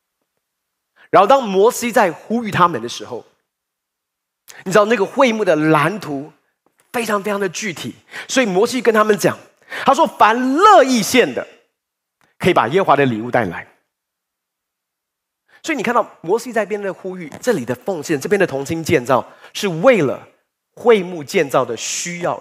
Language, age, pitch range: Chinese, 30-49, 165-260 Hz